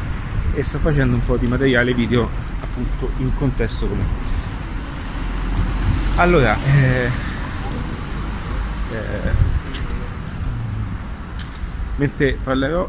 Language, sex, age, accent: Italian, male, 30-49, native